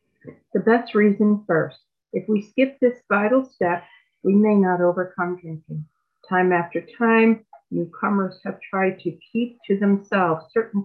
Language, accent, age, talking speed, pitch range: English, American, 50-69, 145 wpm, 170-215 Hz